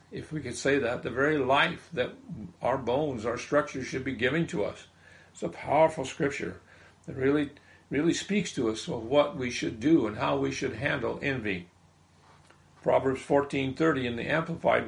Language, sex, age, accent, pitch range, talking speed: English, male, 50-69, American, 110-145 Hz, 180 wpm